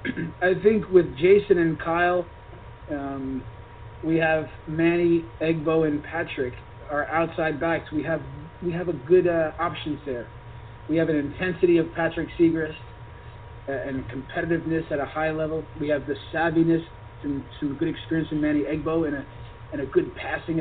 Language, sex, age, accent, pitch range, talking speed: English, male, 40-59, American, 130-165 Hz, 165 wpm